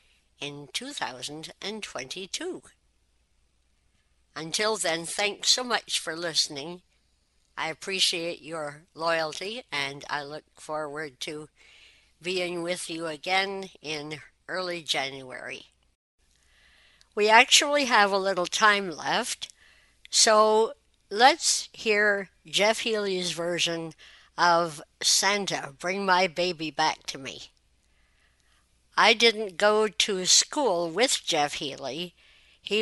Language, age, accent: English, 60-79, American